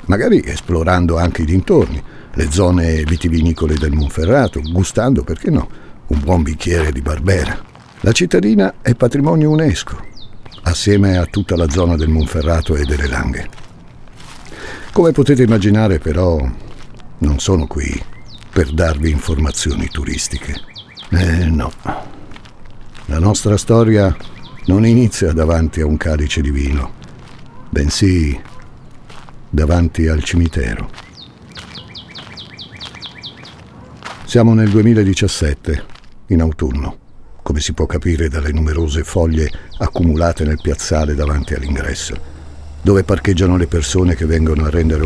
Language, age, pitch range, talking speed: Italian, 60-79, 75-100 Hz, 115 wpm